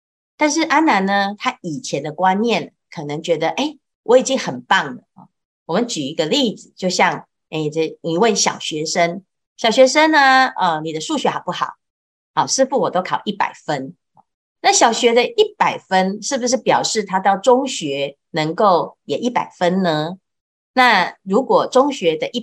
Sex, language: female, Chinese